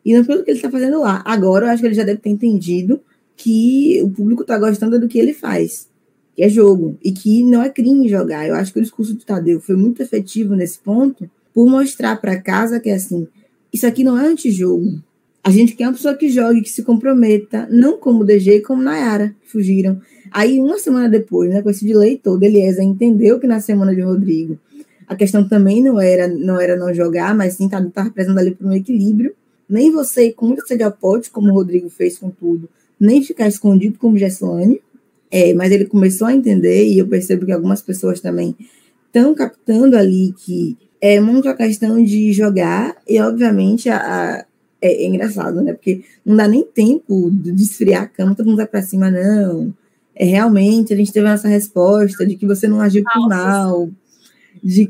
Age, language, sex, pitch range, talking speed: 10-29, Portuguese, female, 190-235 Hz, 205 wpm